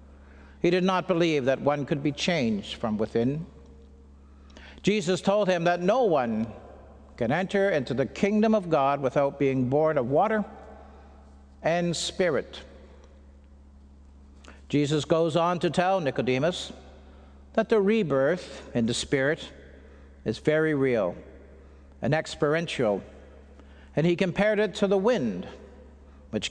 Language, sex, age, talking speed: English, male, 60-79, 125 wpm